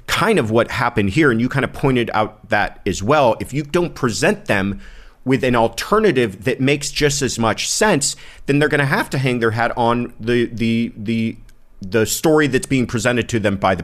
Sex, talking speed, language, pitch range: male, 215 wpm, English, 110-140 Hz